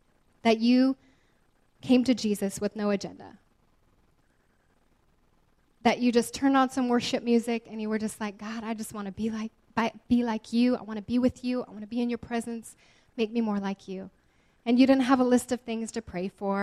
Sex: female